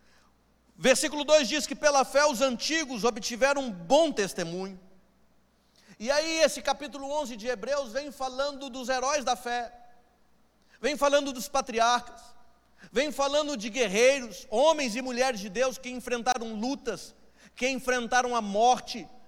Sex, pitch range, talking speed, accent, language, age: male, 240-285 Hz, 140 wpm, Brazilian, Portuguese, 40-59